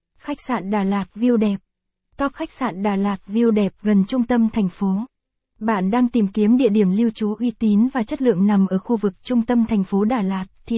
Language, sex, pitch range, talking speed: Vietnamese, female, 195-235 Hz, 235 wpm